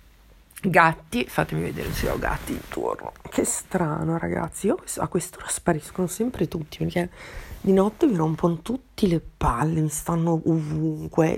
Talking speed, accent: 150 wpm, native